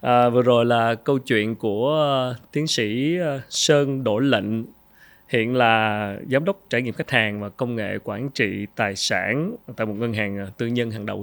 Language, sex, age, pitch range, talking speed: Vietnamese, male, 20-39, 110-130 Hz, 185 wpm